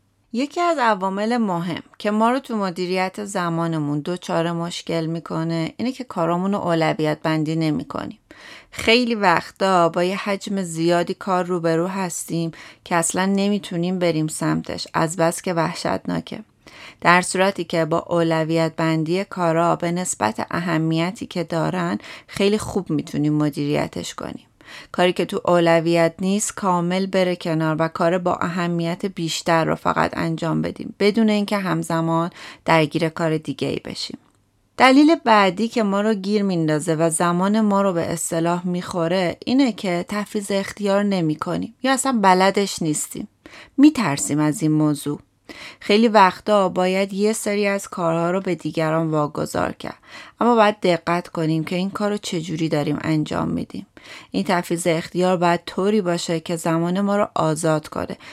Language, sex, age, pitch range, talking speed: Persian, female, 30-49, 165-200 Hz, 145 wpm